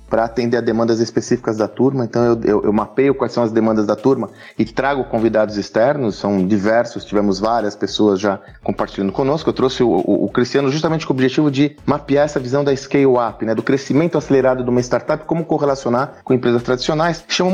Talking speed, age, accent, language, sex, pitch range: 200 wpm, 30-49, Brazilian, Portuguese, male, 120-165 Hz